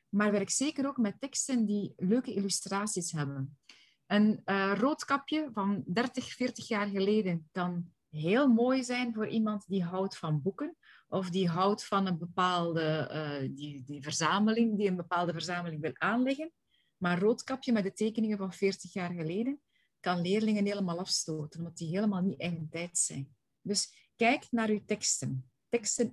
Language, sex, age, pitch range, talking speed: Dutch, female, 30-49, 180-230 Hz, 165 wpm